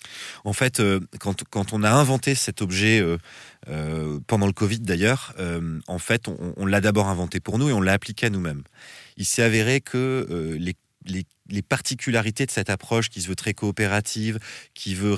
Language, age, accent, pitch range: French, 30-49, French, 95-120 Hz